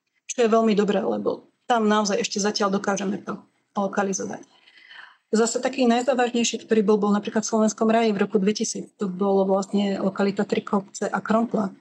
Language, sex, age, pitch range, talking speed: Slovak, female, 30-49, 205-225 Hz, 165 wpm